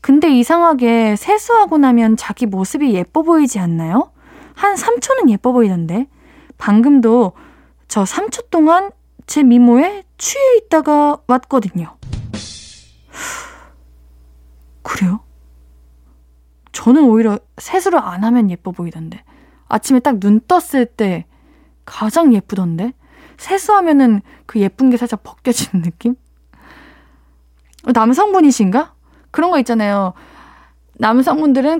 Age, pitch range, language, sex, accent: 20-39, 185-310 Hz, Korean, female, native